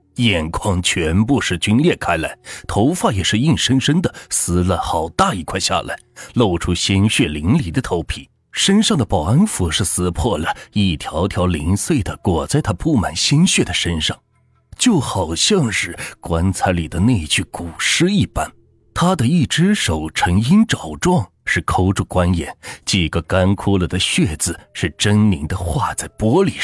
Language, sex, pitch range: Chinese, male, 90-125 Hz